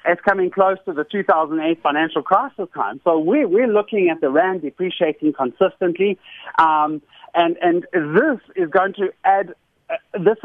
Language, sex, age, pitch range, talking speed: English, male, 30-49, 155-195 Hz, 160 wpm